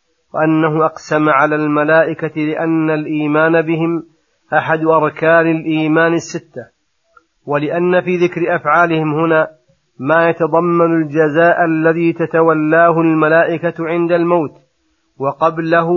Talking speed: 95 wpm